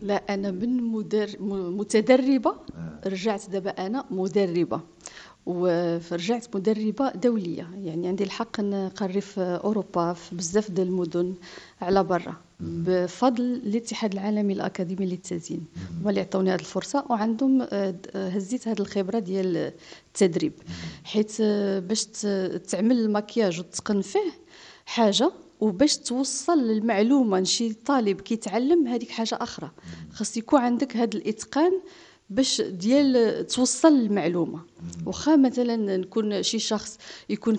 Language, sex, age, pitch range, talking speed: English, female, 40-59, 185-240 Hz, 105 wpm